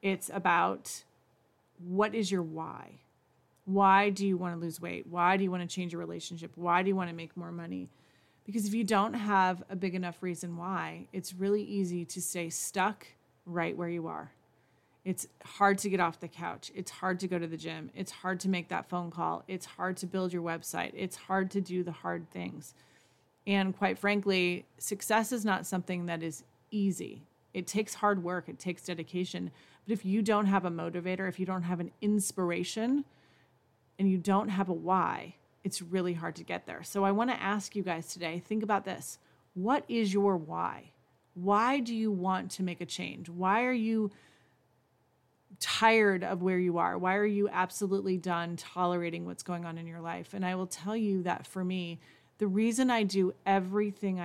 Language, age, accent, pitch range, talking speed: English, 30-49, American, 170-200 Hz, 200 wpm